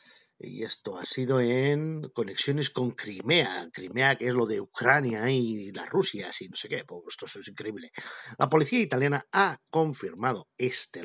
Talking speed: 170 wpm